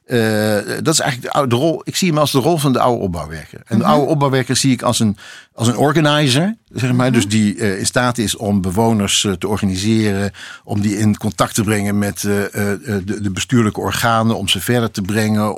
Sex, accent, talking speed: male, Dutch, 225 wpm